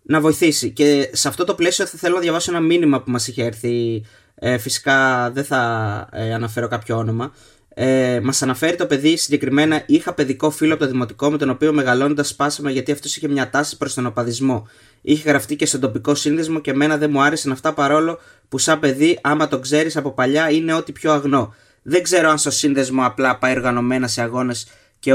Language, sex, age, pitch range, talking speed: Greek, male, 20-39, 130-155 Hz, 205 wpm